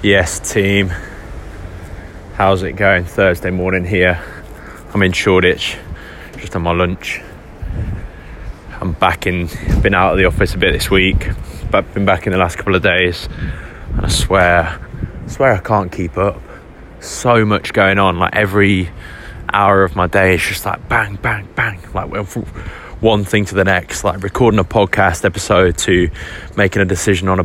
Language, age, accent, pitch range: English, 20-39, British, 90-105 Hz